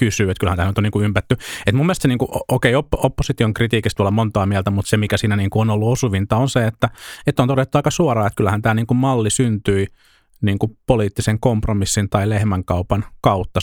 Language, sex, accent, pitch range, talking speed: Finnish, male, native, 100-115 Hz, 190 wpm